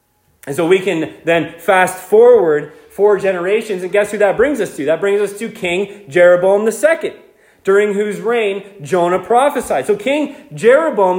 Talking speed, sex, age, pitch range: 165 wpm, male, 30-49, 145-240 Hz